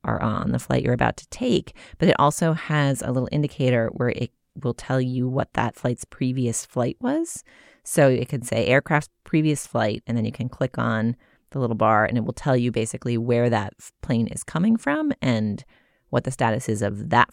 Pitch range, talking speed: 115-150 Hz, 210 wpm